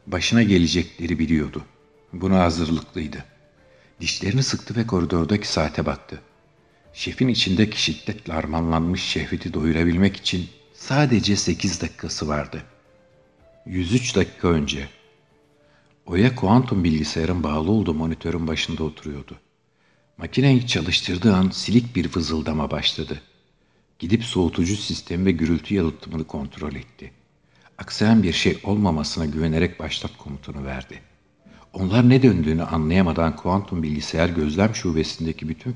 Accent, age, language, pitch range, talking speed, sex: native, 50-69, Turkish, 80-100 Hz, 110 wpm, male